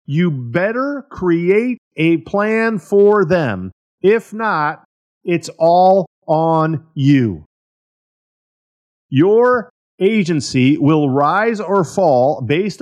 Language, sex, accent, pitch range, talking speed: English, male, American, 135-185 Hz, 95 wpm